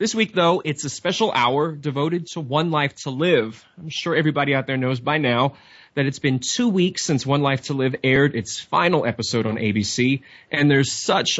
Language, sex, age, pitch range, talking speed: English, male, 20-39, 125-165 Hz, 210 wpm